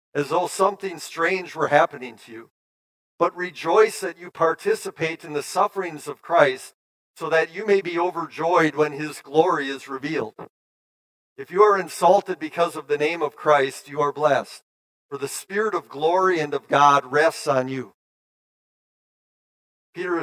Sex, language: male, English